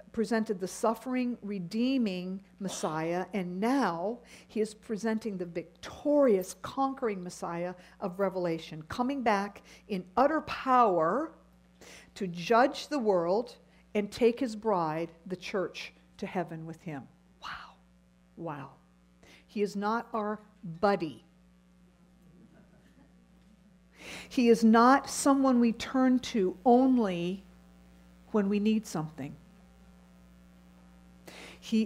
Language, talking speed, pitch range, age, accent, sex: English, 105 wpm, 175-220 Hz, 50-69, American, female